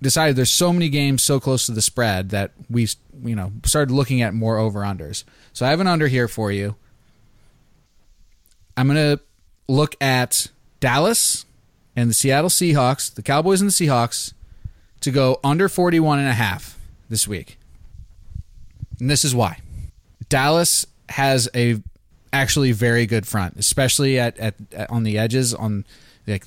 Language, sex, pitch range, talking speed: English, male, 105-130 Hz, 155 wpm